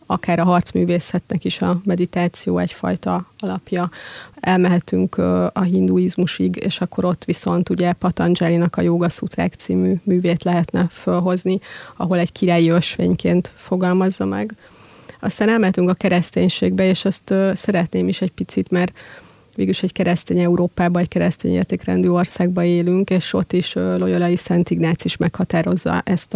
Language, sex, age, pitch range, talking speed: Hungarian, female, 30-49, 170-185 Hz, 135 wpm